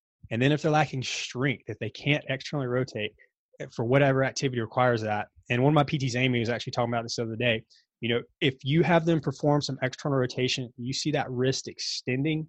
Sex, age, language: male, 20-39, English